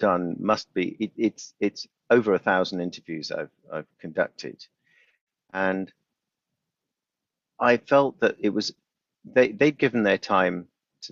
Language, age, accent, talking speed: English, 50-69, British, 135 wpm